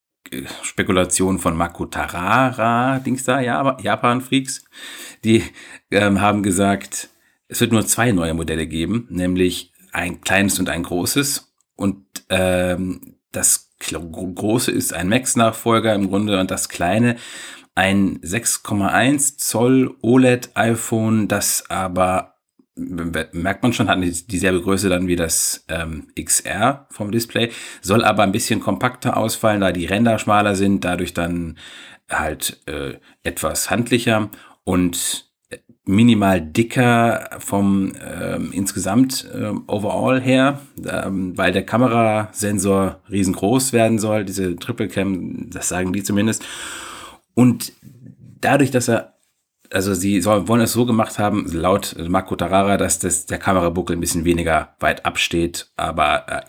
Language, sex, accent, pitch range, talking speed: German, male, German, 90-115 Hz, 125 wpm